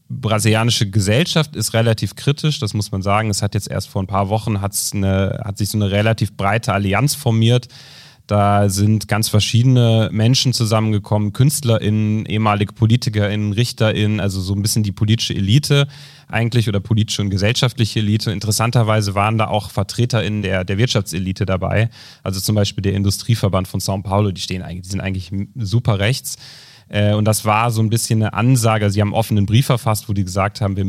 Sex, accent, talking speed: male, German, 185 wpm